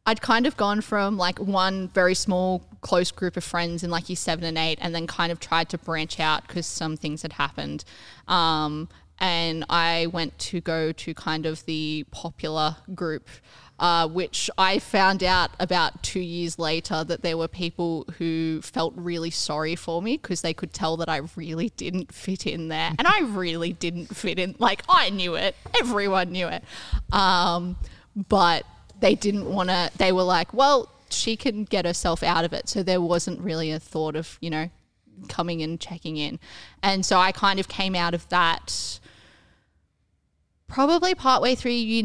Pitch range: 160-195 Hz